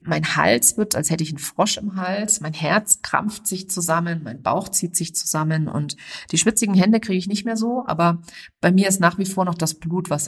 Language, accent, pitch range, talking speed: German, German, 160-195 Hz, 235 wpm